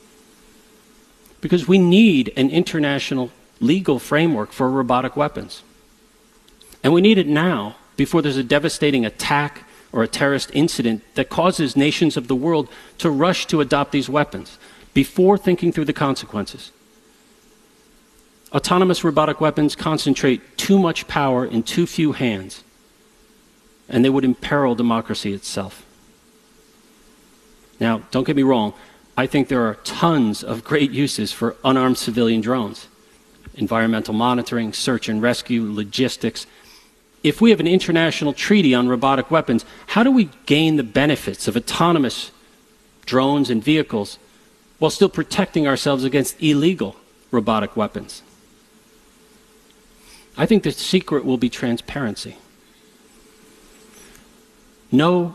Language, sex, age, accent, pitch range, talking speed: English, male, 40-59, American, 125-175 Hz, 125 wpm